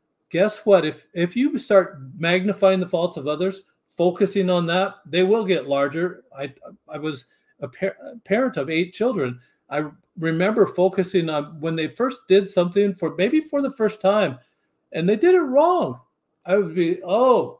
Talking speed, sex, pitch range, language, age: 175 wpm, male, 145-190 Hz, English, 50-69